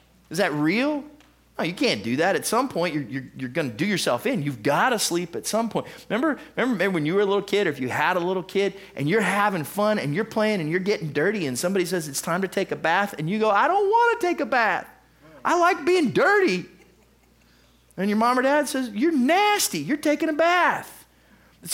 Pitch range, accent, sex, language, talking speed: 145-220 Hz, American, male, English, 230 wpm